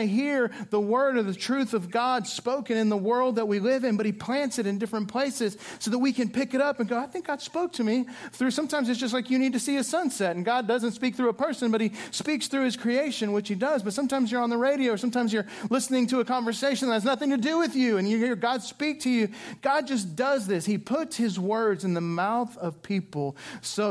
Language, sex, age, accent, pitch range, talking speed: English, male, 40-59, American, 195-260 Hz, 270 wpm